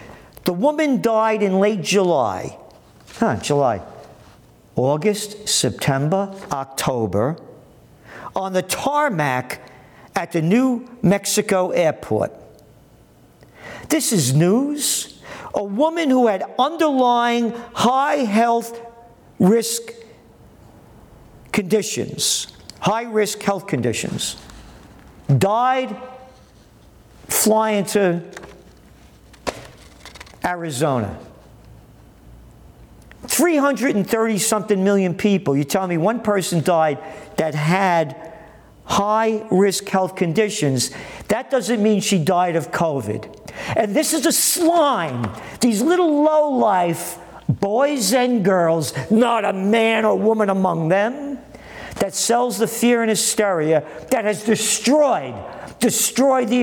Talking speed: 95 wpm